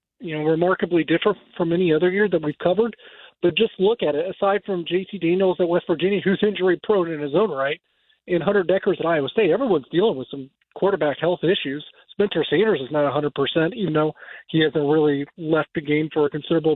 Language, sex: English, male